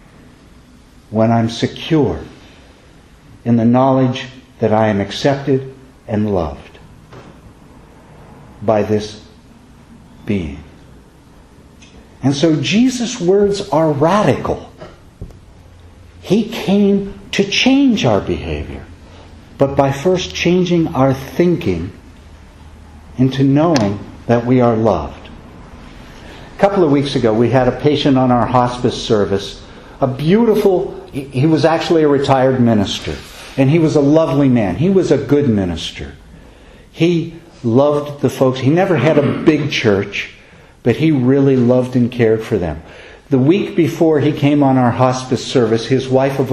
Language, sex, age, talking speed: English, male, 60-79, 130 wpm